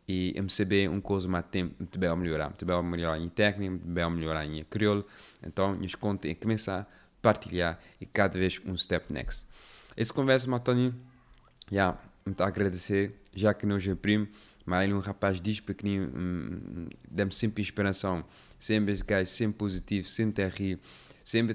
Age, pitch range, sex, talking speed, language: 20-39, 95-125 Hz, male, 190 wpm, Dutch